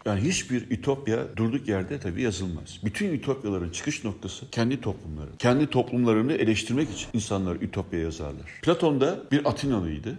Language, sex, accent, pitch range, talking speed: Turkish, male, native, 105-150 Hz, 140 wpm